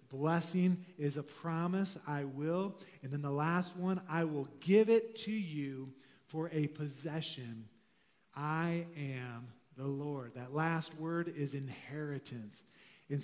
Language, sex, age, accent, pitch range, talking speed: English, male, 40-59, American, 145-185 Hz, 135 wpm